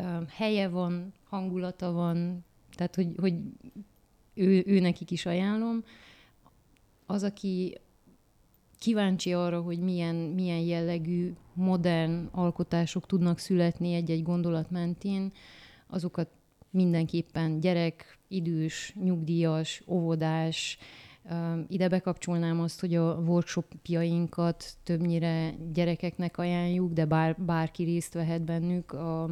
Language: Hungarian